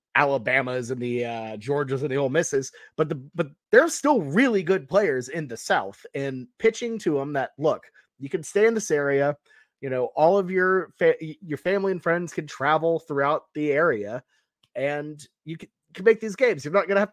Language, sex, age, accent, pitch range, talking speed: English, male, 30-49, American, 130-185 Hz, 200 wpm